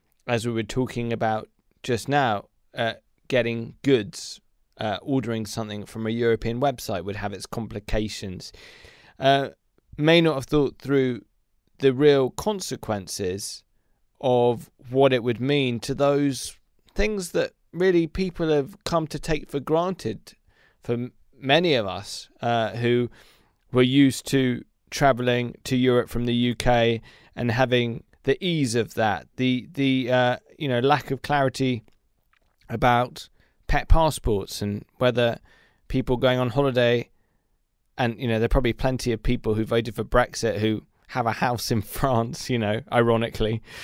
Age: 20-39